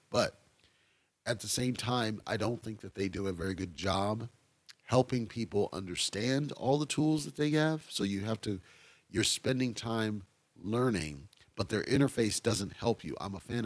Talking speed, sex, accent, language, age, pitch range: 180 wpm, male, American, English, 40-59, 95-120 Hz